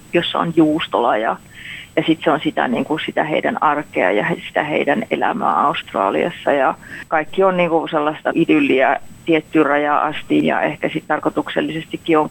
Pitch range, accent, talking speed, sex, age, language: 145-170 Hz, native, 155 wpm, female, 40-59, Finnish